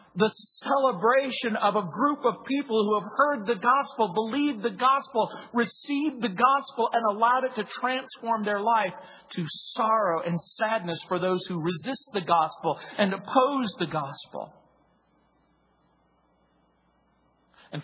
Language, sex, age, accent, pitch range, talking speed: English, male, 50-69, American, 170-240 Hz, 135 wpm